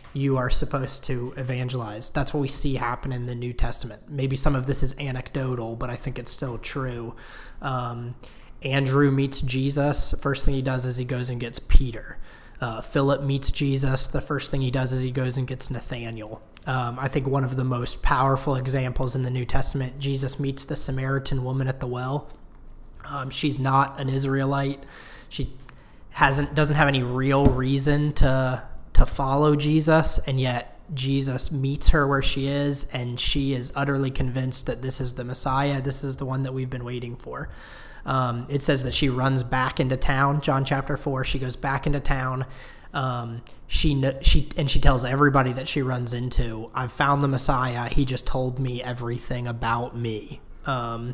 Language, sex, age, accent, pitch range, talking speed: English, male, 20-39, American, 125-140 Hz, 190 wpm